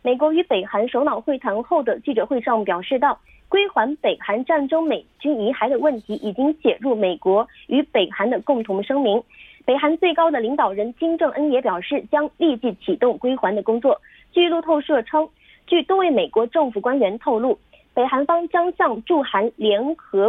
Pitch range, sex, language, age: 225-320 Hz, female, Korean, 30-49